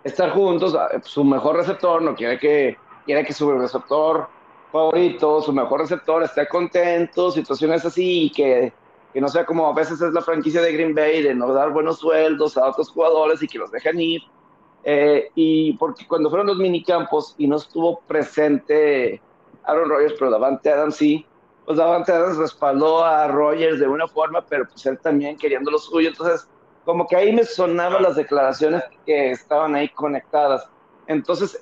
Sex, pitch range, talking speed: male, 150-175 Hz, 175 wpm